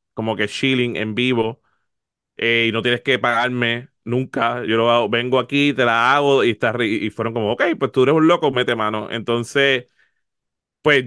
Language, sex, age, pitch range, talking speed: Spanish, male, 30-49, 120-145 Hz, 190 wpm